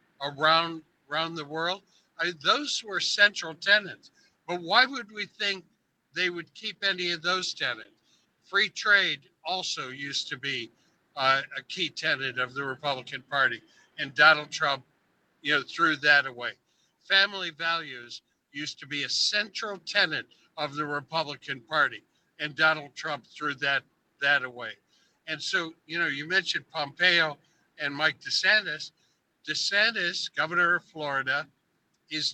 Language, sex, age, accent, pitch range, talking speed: English, male, 60-79, American, 145-190 Hz, 145 wpm